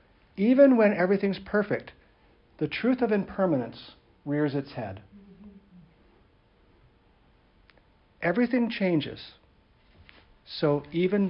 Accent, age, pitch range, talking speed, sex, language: American, 60-79, 115-145 Hz, 80 wpm, male, English